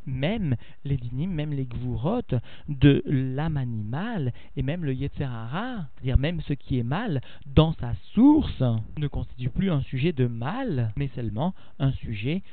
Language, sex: French, male